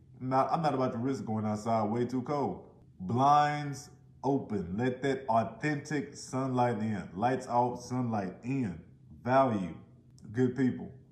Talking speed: 135 wpm